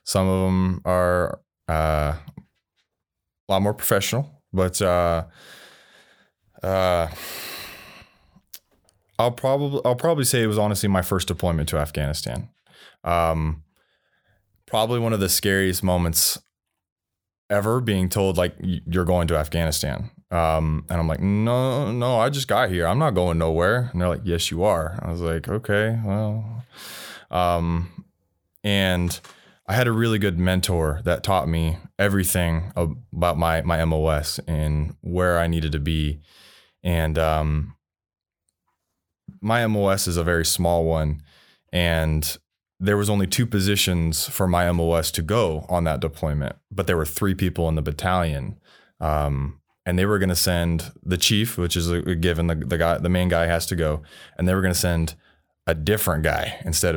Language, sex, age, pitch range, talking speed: English, male, 20-39, 80-95 Hz, 160 wpm